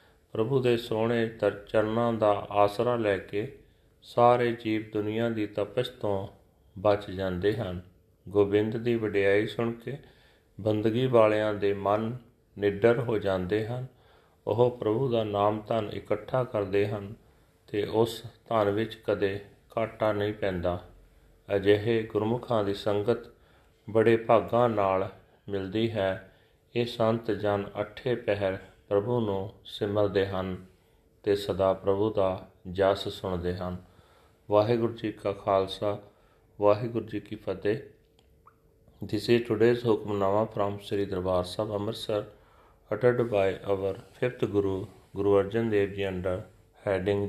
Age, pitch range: 40-59, 95-115 Hz